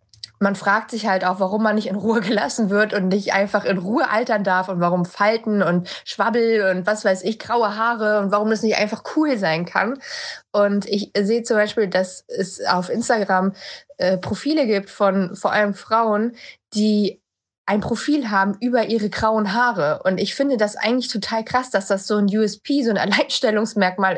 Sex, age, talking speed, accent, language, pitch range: female, 20-39, 190 wpm, German, German, 180-220 Hz